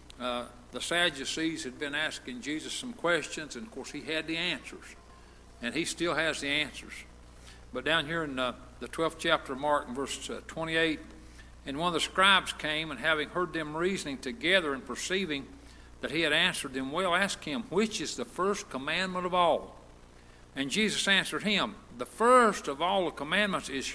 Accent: American